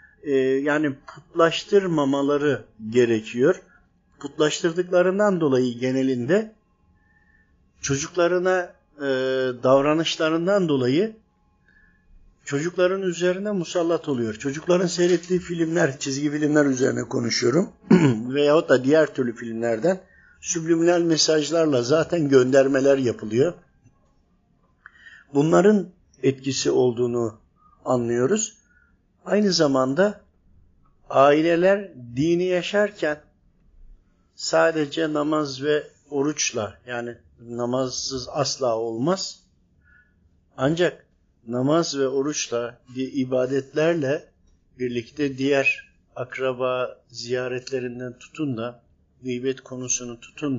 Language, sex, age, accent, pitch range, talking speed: Turkish, male, 50-69, native, 125-165 Hz, 75 wpm